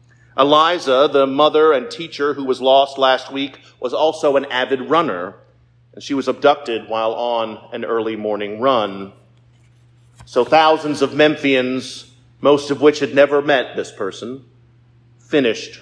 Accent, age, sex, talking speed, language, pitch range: American, 40-59, male, 145 wpm, English, 120-140 Hz